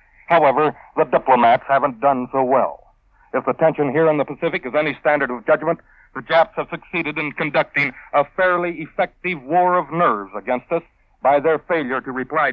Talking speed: 180 wpm